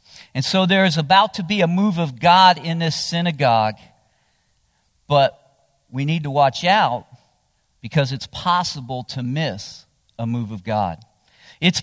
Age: 50-69